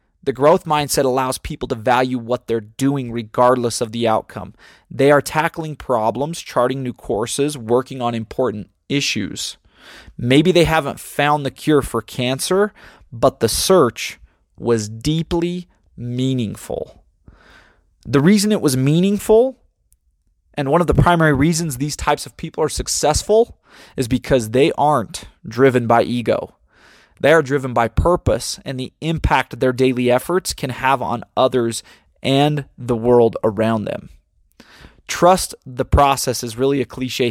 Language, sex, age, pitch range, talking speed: English, male, 20-39, 115-145 Hz, 145 wpm